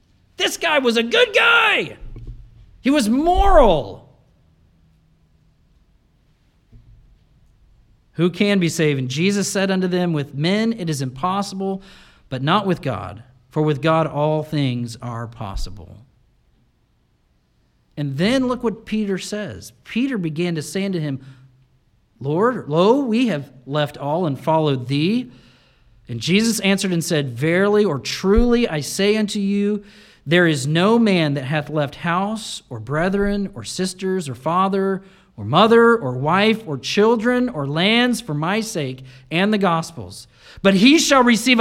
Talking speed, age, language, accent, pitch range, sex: 145 wpm, 40-59, English, American, 130-220 Hz, male